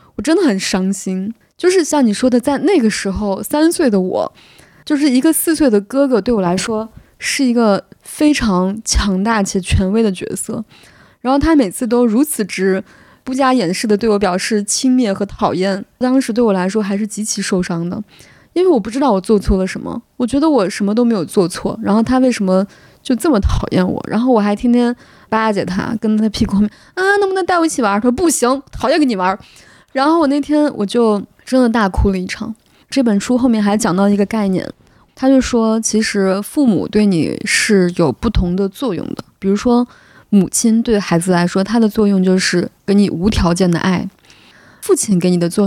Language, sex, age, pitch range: Chinese, female, 20-39, 190-245 Hz